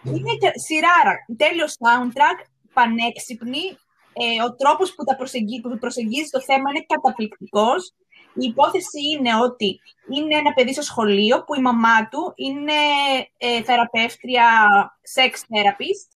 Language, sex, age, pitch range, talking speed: Greek, female, 20-39, 230-300 Hz, 130 wpm